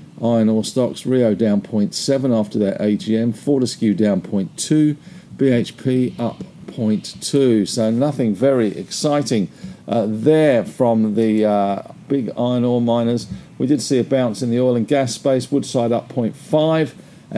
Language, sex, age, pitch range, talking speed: English, male, 50-69, 115-155 Hz, 145 wpm